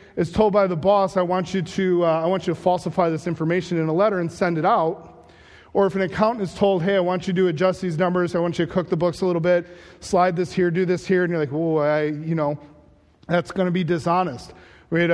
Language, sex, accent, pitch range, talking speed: English, male, American, 170-205 Hz, 265 wpm